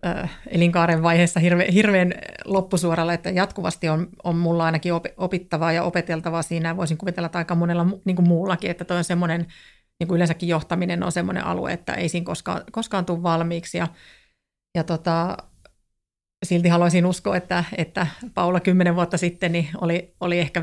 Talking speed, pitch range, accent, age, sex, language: 155 wpm, 170-185 Hz, native, 30-49, female, Finnish